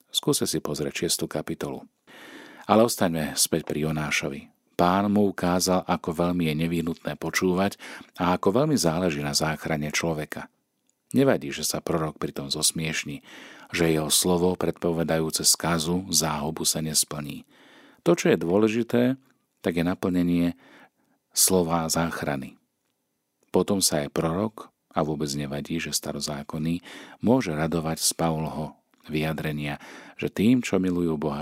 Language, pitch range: Slovak, 80-95 Hz